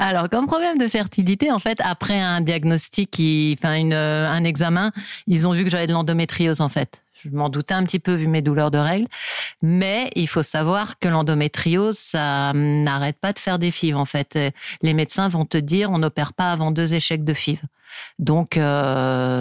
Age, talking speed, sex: 40-59, 200 wpm, female